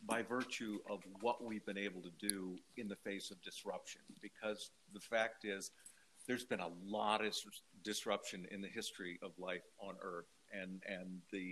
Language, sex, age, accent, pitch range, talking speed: Dutch, male, 50-69, American, 95-120 Hz, 175 wpm